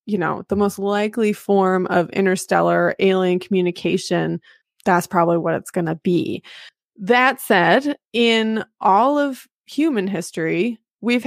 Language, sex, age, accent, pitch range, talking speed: English, female, 20-39, American, 185-225 Hz, 135 wpm